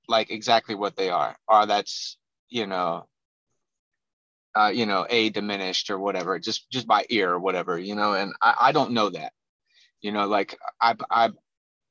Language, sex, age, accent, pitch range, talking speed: English, male, 30-49, American, 105-125 Hz, 175 wpm